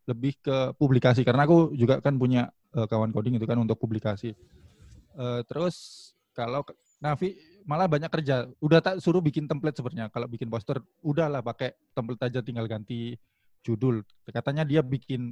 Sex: male